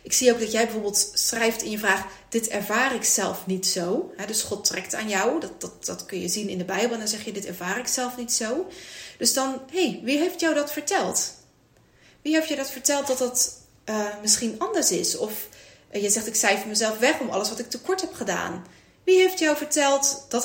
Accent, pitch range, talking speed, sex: Dutch, 205-265 Hz, 240 wpm, female